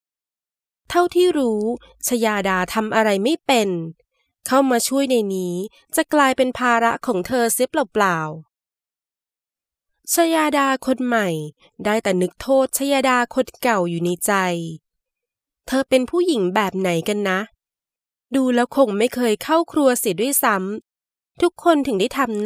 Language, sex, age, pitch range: Thai, female, 20-39, 195-275 Hz